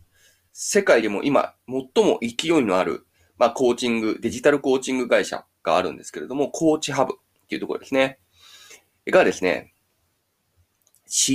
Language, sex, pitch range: Japanese, male, 95-130 Hz